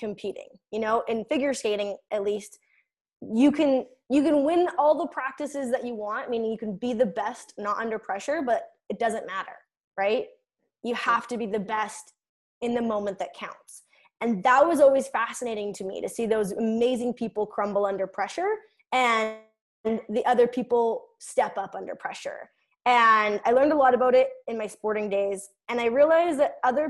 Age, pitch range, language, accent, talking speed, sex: 20-39, 205-265 Hz, English, American, 185 wpm, female